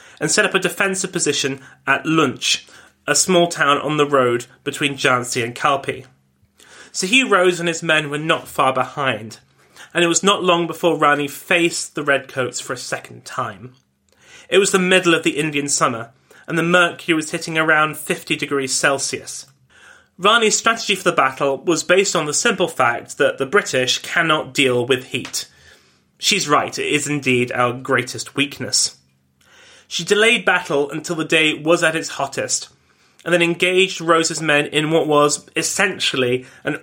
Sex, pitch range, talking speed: male, 130-175 Hz, 170 wpm